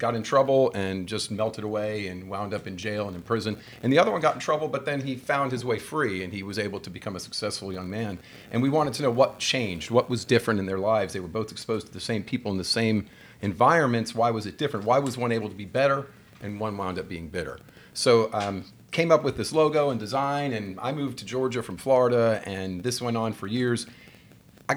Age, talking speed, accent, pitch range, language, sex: 40-59, 250 wpm, American, 95-125 Hz, English, male